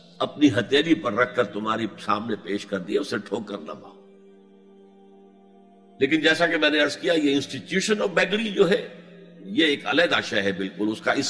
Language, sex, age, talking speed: Urdu, male, 60-79, 190 wpm